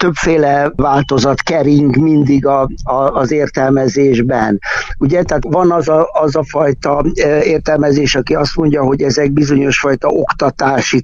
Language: Hungarian